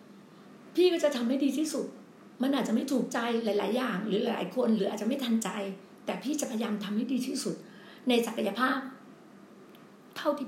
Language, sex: Thai, female